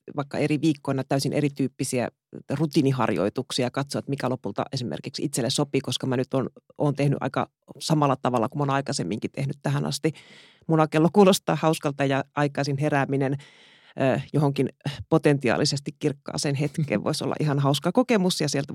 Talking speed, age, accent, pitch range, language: 145 wpm, 30-49, native, 130-160 Hz, Finnish